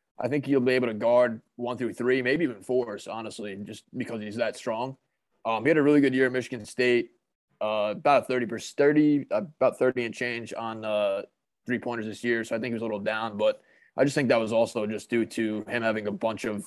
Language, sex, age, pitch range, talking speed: English, male, 20-39, 110-130 Hz, 245 wpm